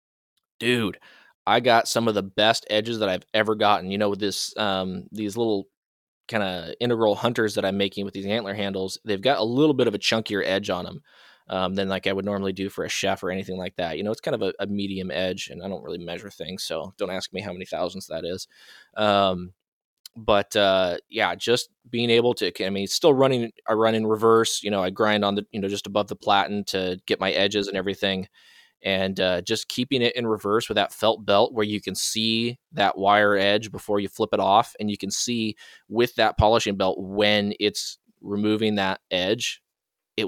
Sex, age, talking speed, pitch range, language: male, 20-39, 220 wpm, 95-110 Hz, English